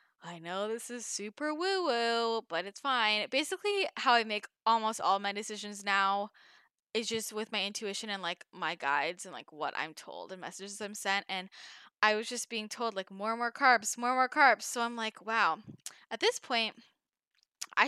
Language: English